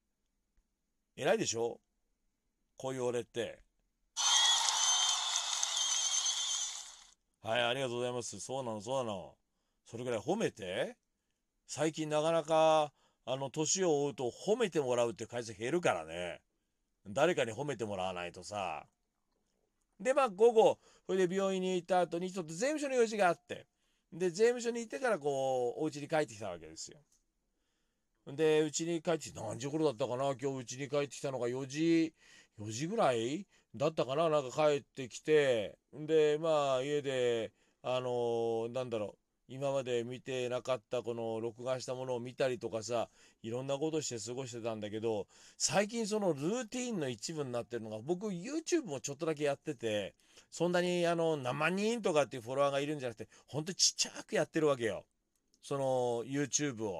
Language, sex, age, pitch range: Japanese, male, 40-59, 120-165 Hz